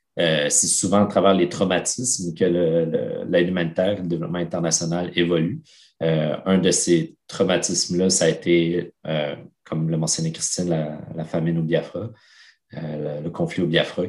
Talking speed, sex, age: 175 wpm, male, 30-49